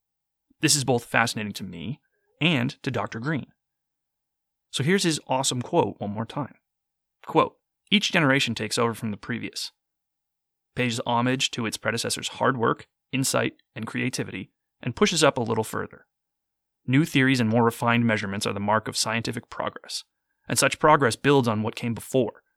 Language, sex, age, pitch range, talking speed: English, male, 30-49, 115-140 Hz, 165 wpm